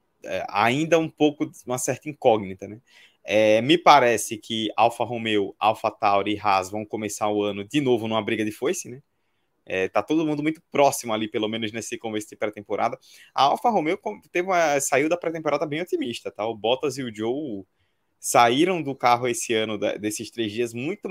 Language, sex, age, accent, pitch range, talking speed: Portuguese, male, 20-39, Brazilian, 110-145 Hz, 195 wpm